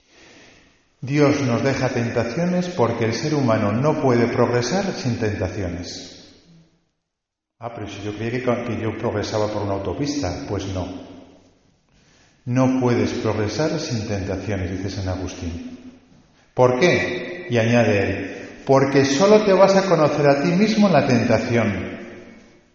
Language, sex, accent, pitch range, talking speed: Spanish, male, Spanish, 100-140 Hz, 135 wpm